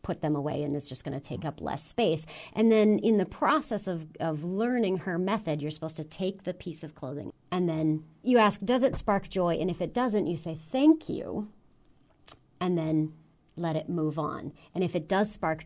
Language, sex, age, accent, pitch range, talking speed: English, female, 40-59, American, 155-210 Hz, 220 wpm